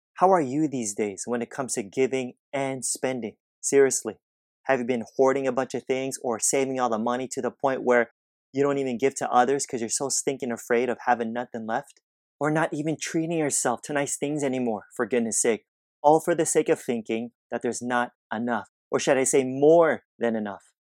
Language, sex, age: English, male, 30-49